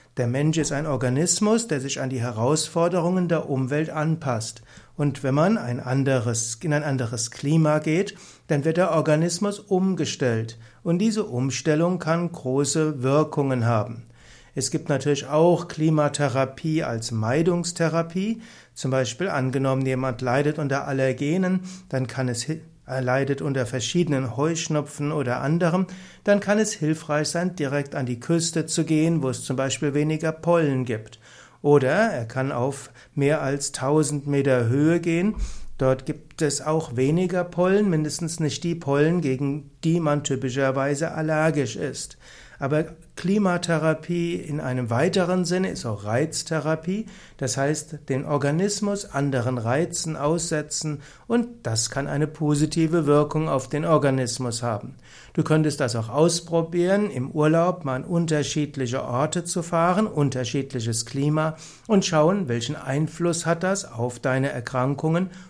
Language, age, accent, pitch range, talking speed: German, 60-79, German, 130-165 Hz, 140 wpm